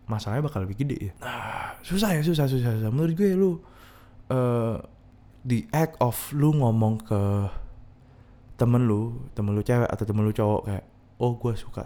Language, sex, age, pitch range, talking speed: Indonesian, male, 20-39, 100-120 Hz, 170 wpm